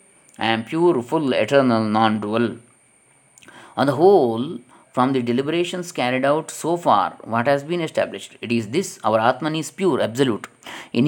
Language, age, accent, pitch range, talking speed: Kannada, 20-39, native, 120-155 Hz, 155 wpm